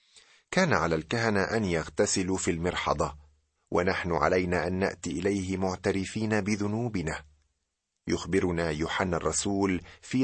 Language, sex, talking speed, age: Arabic, male, 105 wpm, 40-59